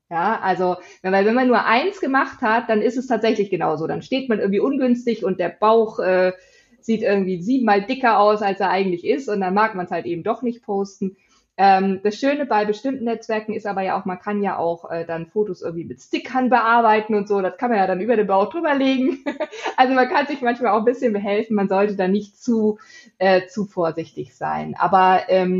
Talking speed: 215 wpm